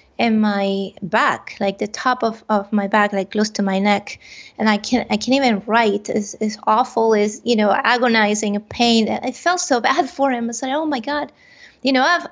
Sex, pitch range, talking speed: female, 215-255 Hz, 220 wpm